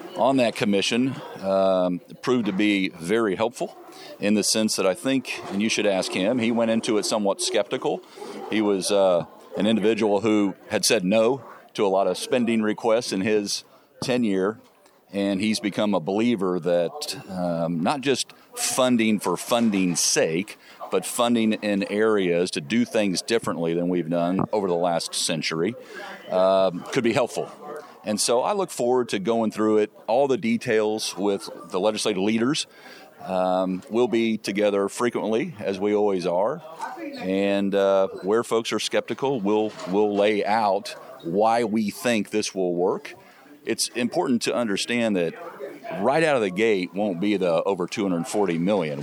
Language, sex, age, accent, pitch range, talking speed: English, male, 50-69, American, 95-110 Hz, 165 wpm